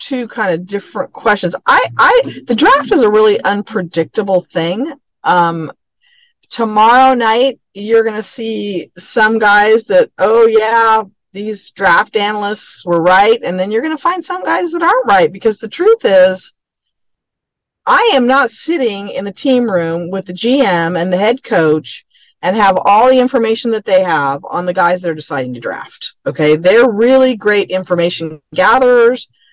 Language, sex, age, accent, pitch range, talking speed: English, female, 50-69, American, 185-250 Hz, 170 wpm